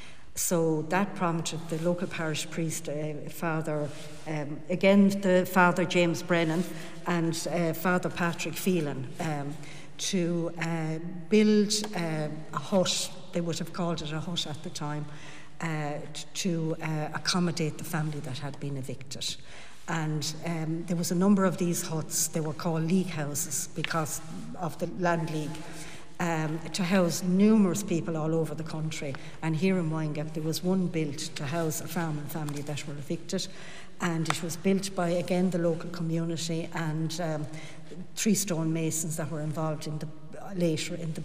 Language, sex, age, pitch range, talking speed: English, female, 60-79, 155-175 Hz, 165 wpm